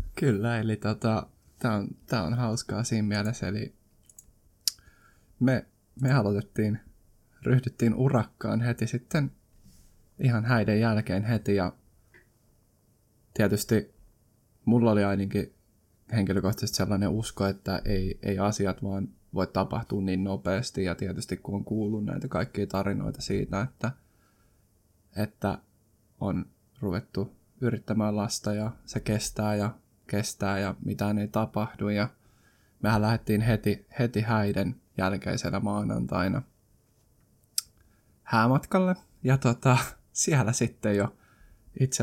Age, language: 20-39, Finnish